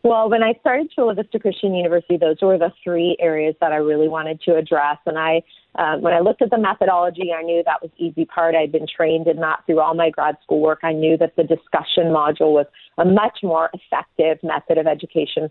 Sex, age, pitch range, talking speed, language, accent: female, 30-49, 160-190 Hz, 235 wpm, English, American